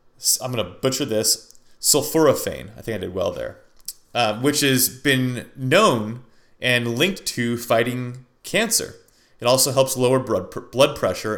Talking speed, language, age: 150 wpm, English, 30-49